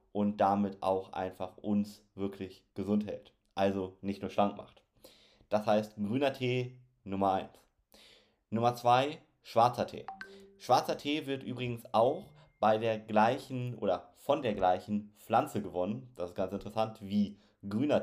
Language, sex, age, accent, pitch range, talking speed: German, male, 30-49, German, 100-120 Hz, 145 wpm